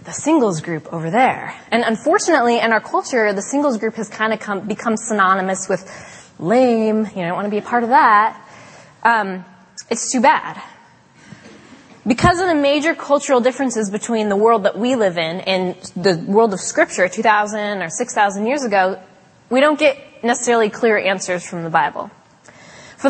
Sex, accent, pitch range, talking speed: female, American, 190-230 Hz, 170 wpm